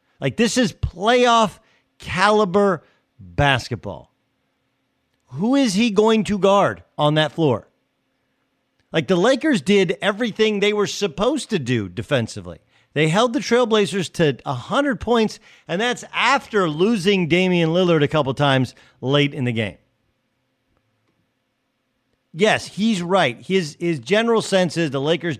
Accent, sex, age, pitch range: American, male, 50-69, 135-205 Hz